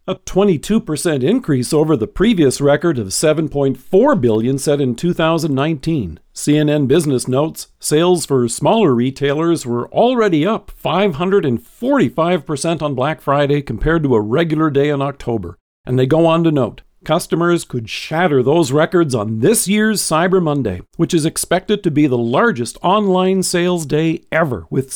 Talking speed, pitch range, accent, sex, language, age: 150 wpm, 130-180 Hz, American, male, English, 50-69